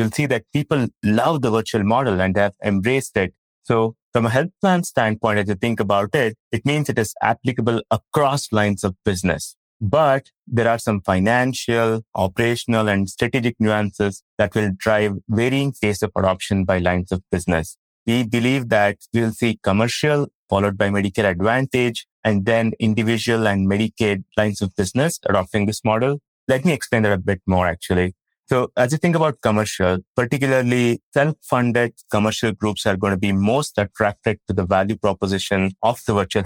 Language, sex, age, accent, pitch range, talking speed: English, male, 30-49, Indian, 100-120 Hz, 170 wpm